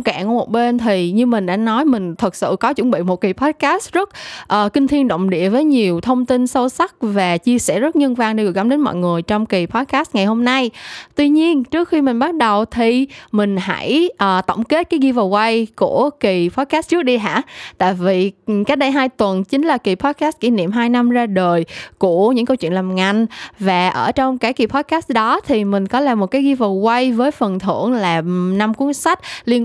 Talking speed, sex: 225 wpm, female